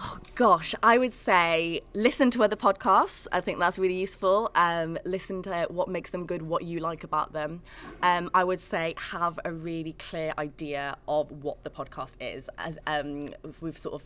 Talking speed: 190 wpm